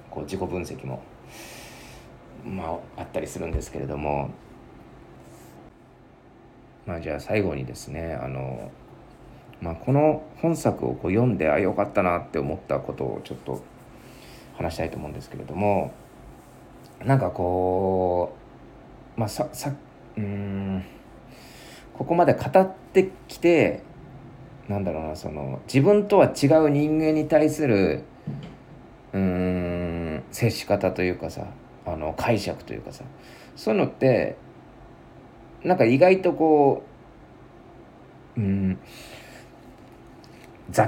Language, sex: Japanese, male